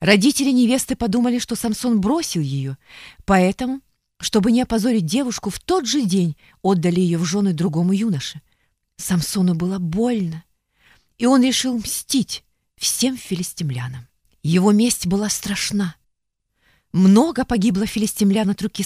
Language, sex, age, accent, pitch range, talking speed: Russian, female, 30-49, native, 180-260 Hz, 125 wpm